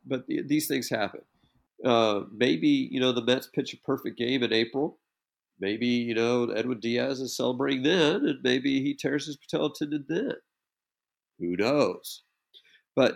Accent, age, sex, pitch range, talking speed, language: American, 50-69, male, 105-135 Hz, 160 wpm, English